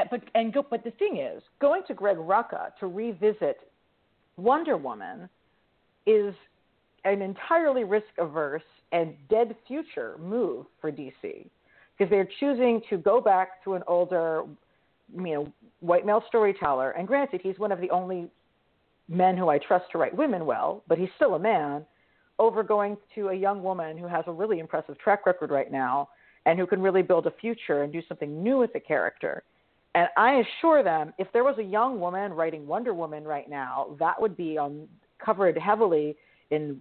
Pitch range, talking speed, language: 160-220 Hz, 180 wpm, English